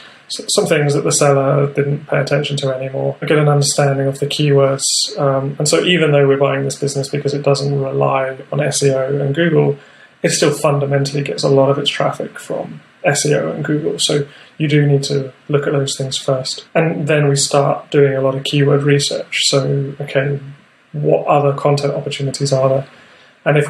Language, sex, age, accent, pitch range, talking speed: English, male, 30-49, British, 140-145 Hz, 195 wpm